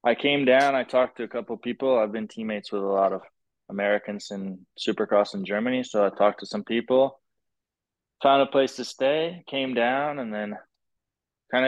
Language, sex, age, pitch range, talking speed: English, male, 20-39, 105-120 Hz, 190 wpm